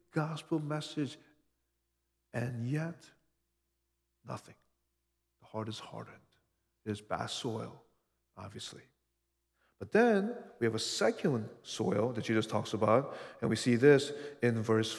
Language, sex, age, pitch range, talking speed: English, male, 50-69, 105-140 Hz, 120 wpm